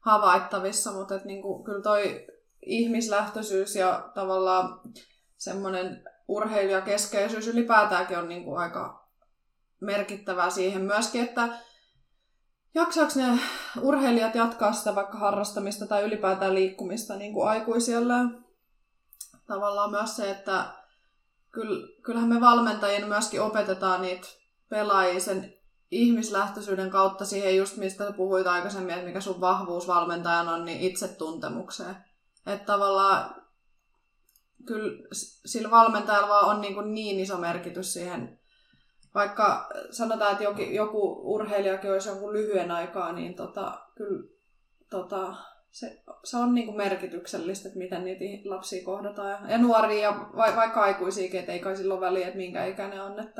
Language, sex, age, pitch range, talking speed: Finnish, female, 20-39, 190-215 Hz, 115 wpm